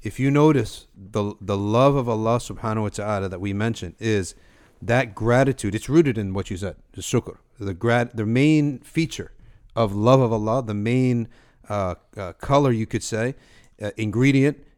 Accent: American